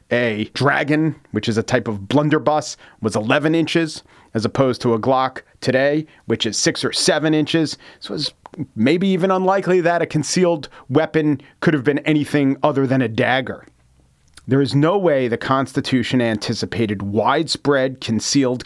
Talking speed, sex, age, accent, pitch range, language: 160 wpm, male, 40-59, American, 120-160 Hz, English